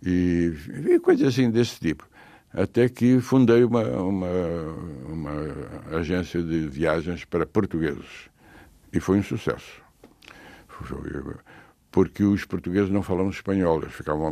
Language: Portuguese